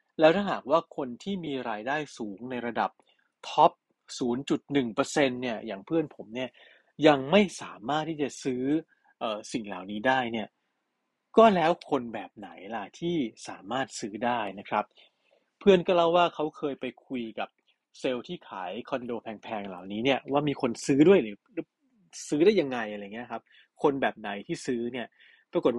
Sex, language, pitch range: male, Thai, 125-175 Hz